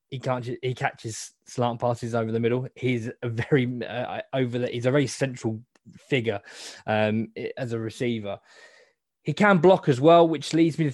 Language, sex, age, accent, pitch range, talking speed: English, male, 20-39, British, 115-140 Hz, 180 wpm